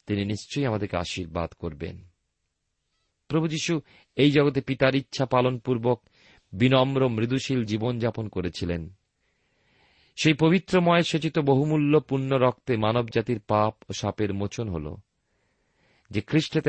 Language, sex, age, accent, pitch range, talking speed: Bengali, male, 40-59, native, 100-140 Hz, 65 wpm